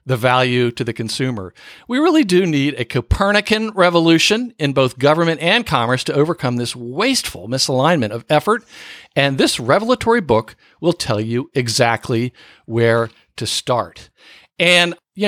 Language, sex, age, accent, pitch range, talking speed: English, male, 50-69, American, 125-175 Hz, 145 wpm